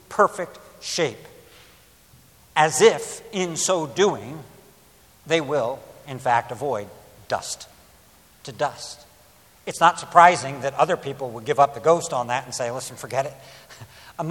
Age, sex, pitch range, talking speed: 60-79, male, 140-210 Hz, 145 wpm